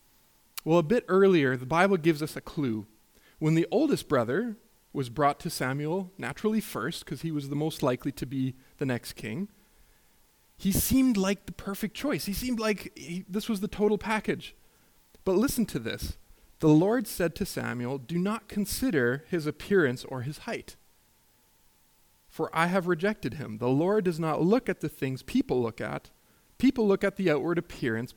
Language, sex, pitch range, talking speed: English, male, 145-200 Hz, 180 wpm